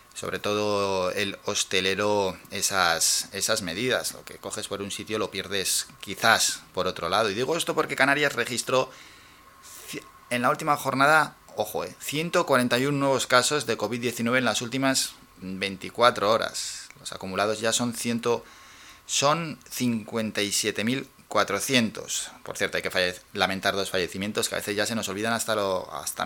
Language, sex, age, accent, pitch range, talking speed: Spanish, male, 20-39, Spanish, 100-125 Hz, 155 wpm